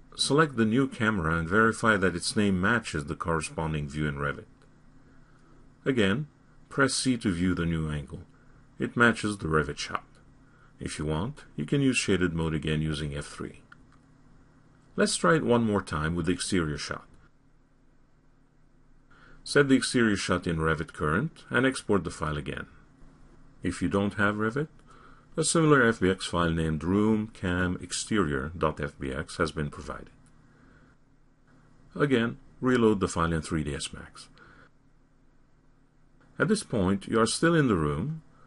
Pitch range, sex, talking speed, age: 90-135 Hz, male, 140 wpm, 50-69